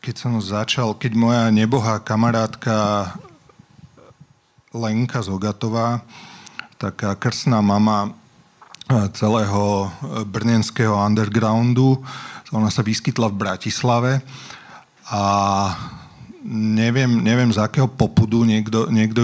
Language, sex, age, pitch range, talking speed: Slovak, male, 40-59, 105-120 Hz, 85 wpm